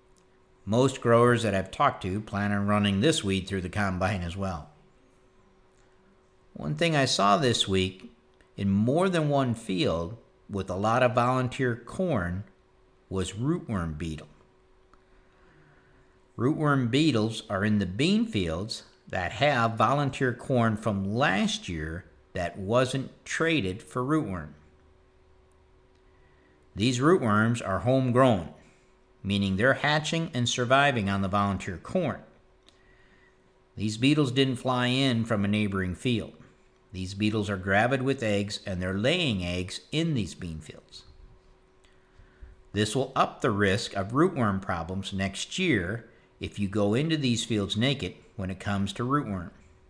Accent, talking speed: American, 135 wpm